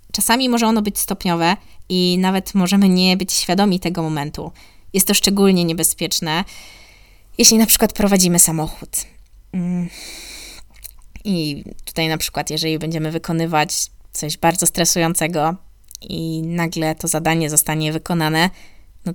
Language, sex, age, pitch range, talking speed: Polish, female, 20-39, 150-185 Hz, 120 wpm